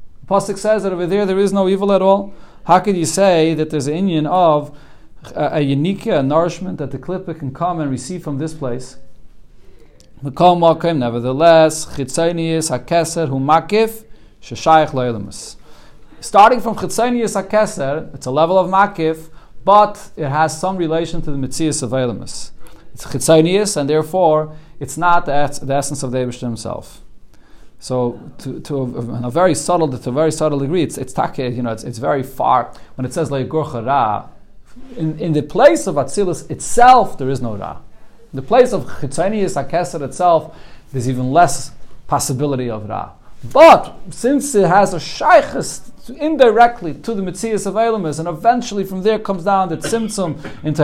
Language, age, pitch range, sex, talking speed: English, 40-59, 140-195 Hz, male, 165 wpm